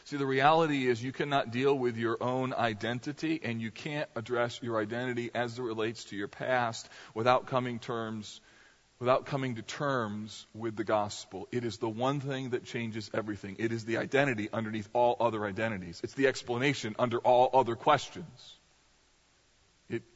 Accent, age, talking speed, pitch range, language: American, 40-59, 170 wpm, 115-150 Hz, English